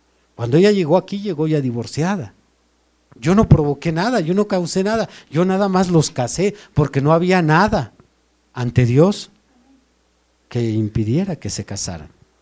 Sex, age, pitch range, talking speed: male, 50-69, 120-180 Hz, 150 wpm